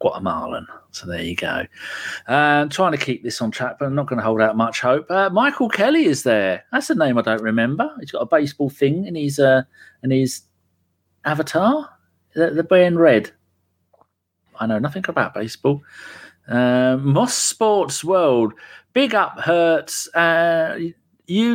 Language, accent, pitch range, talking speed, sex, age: English, British, 110-170 Hz, 175 wpm, male, 40-59